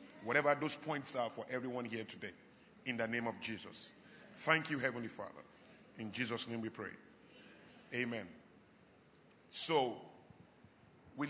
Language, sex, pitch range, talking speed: English, male, 130-150 Hz, 135 wpm